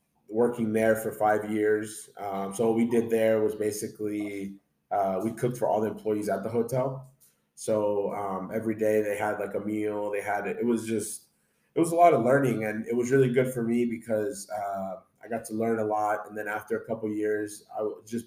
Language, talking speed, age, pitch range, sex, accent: English, 215 wpm, 20-39, 105-120 Hz, male, American